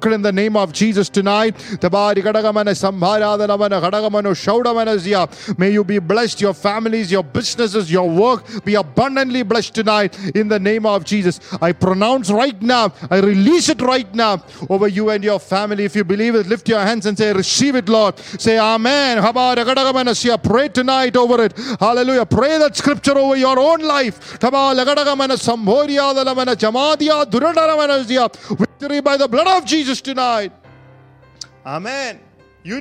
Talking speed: 135 wpm